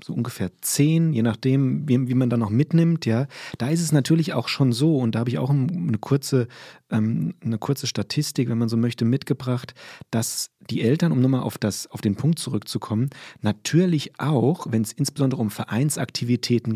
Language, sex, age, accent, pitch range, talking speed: German, male, 30-49, German, 120-150 Hz, 185 wpm